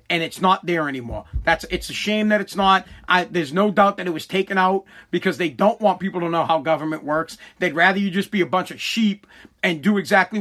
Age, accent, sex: 30-49, American, male